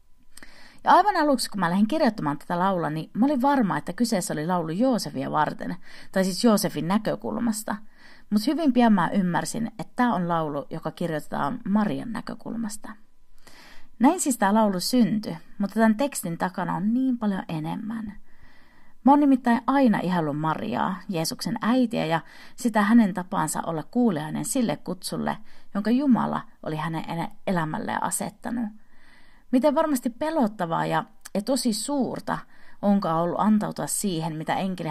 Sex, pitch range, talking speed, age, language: female, 175-245 Hz, 140 wpm, 30-49, Finnish